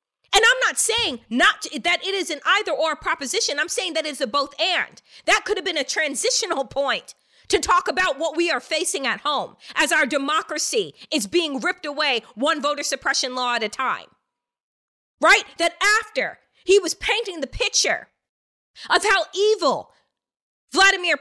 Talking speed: 175 wpm